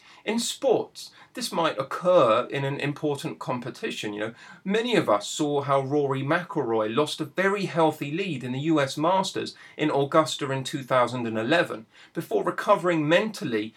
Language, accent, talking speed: English, British, 150 wpm